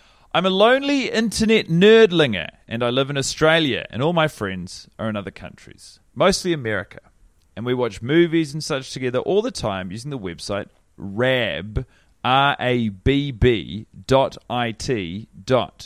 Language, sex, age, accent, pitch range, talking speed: English, male, 30-49, Australian, 105-145 Hz, 130 wpm